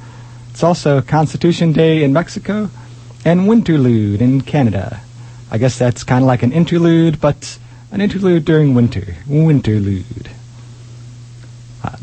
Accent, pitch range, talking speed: American, 120-150 Hz, 125 wpm